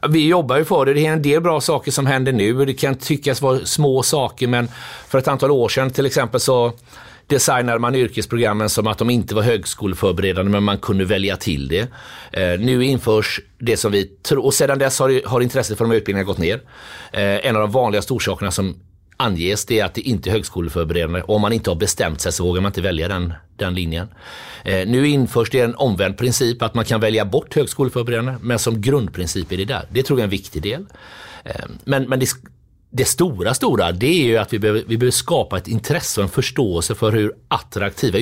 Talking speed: 225 wpm